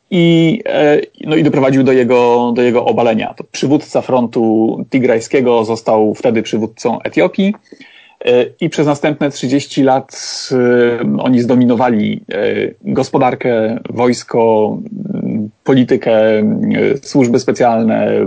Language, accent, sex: Polish, native, male